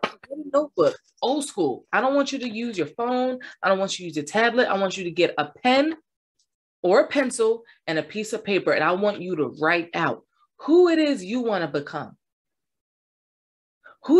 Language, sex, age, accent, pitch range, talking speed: English, female, 20-39, American, 155-250 Hz, 205 wpm